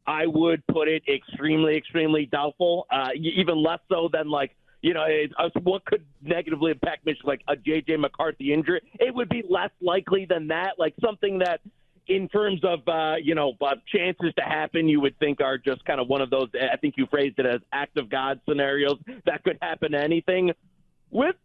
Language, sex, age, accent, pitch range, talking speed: English, male, 40-59, American, 155-220 Hz, 205 wpm